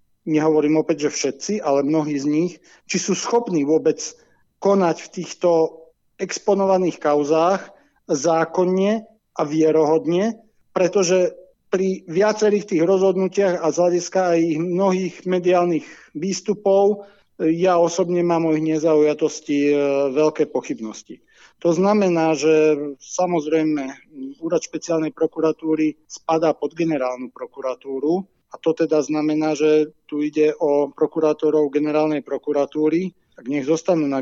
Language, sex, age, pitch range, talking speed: Slovak, male, 50-69, 145-175 Hz, 115 wpm